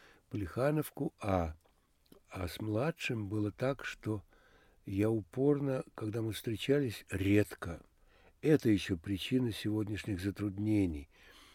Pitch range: 100-135 Hz